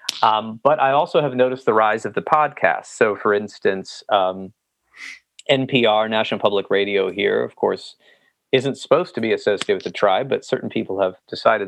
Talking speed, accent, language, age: 180 wpm, American, English, 30-49